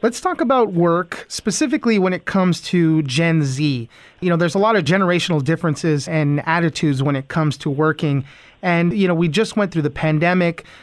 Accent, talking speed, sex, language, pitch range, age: American, 195 wpm, male, English, 155-195 Hz, 30-49